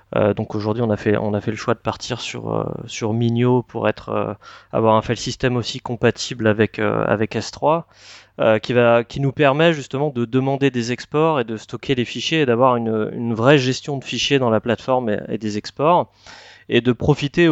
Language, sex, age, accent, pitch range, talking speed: French, male, 30-49, French, 110-135 Hz, 220 wpm